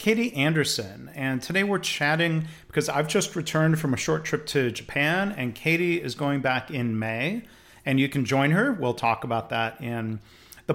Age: 40-59